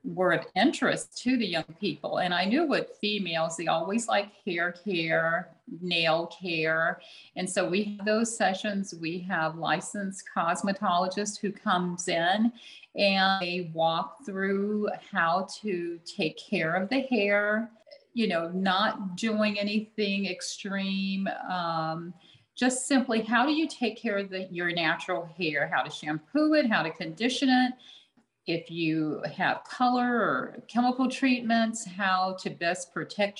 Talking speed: 145 wpm